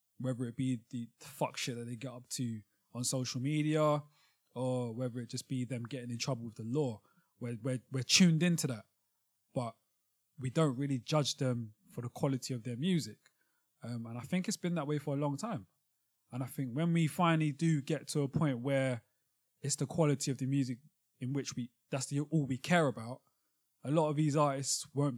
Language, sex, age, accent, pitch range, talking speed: English, male, 20-39, British, 120-145 Hz, 210 wpm